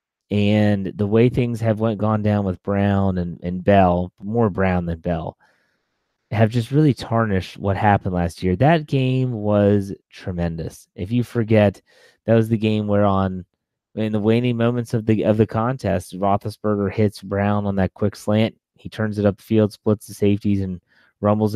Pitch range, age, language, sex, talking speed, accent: 100-115 Hz, 30-49, English, male, 180 wpm, American